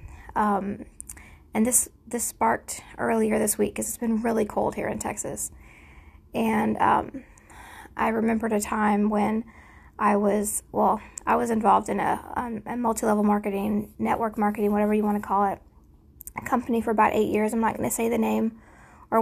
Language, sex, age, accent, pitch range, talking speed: English, female, 20-39, American, 205-225 Hz, 180 wpm